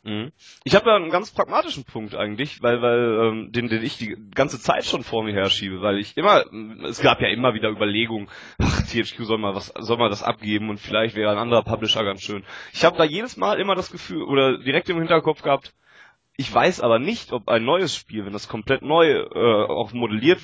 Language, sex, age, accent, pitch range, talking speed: German, male, 20-39, German, 115-155 Hz, 220 wpm